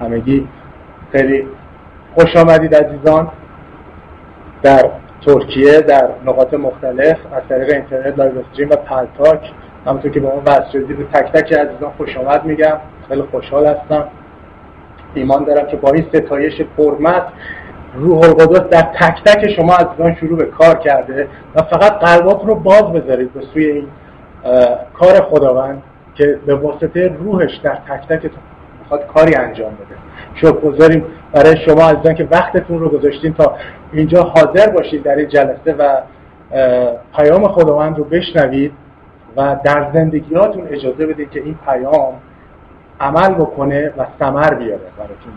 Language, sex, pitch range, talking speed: English, male, 135-160 Hz, 140 wpm